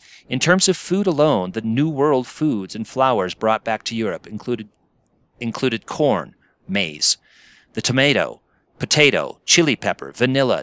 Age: 40-59